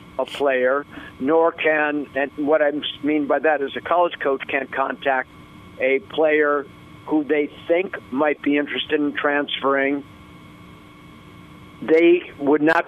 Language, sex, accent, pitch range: English, male, American, 140-155 Hz